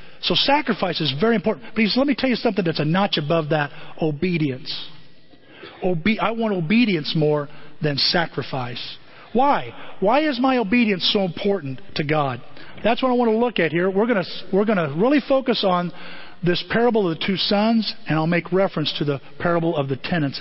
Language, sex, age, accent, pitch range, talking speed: English, male, 40-59, American, 155-220 Hz, 185 wpm